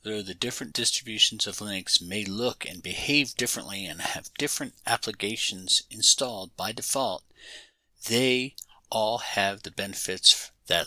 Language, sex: English, male